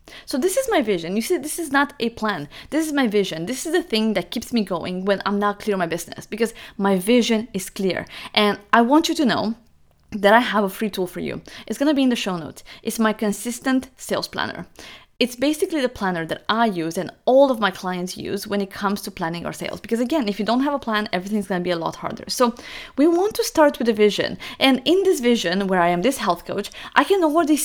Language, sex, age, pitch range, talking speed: English, female, 20-39, 195-270 Hz, 260 wpm